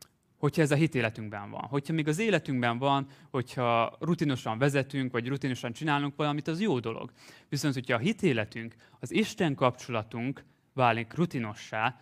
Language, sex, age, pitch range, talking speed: Hungarian, male, 20-39, 120-150 Hz, 150 wpm